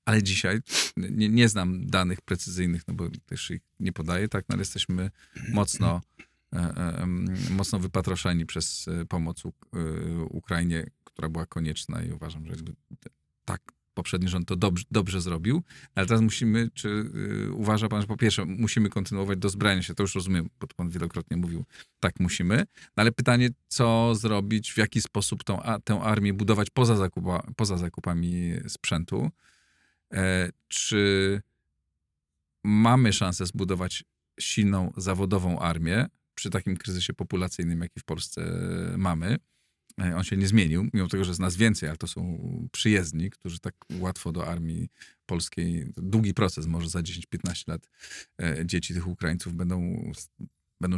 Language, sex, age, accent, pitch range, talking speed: Polish, male, 40-59, native, 85-105 Hz, 150 wpm